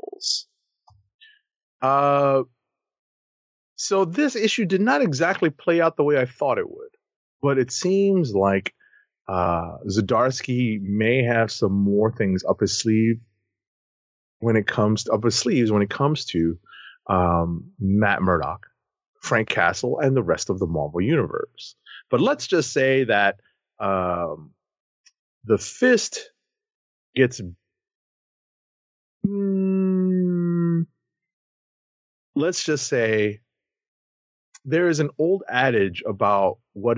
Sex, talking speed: male, 115 wpm